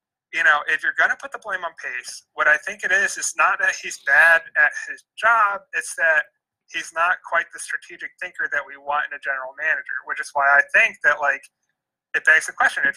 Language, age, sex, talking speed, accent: English, 30-49, male, 235 wpm, American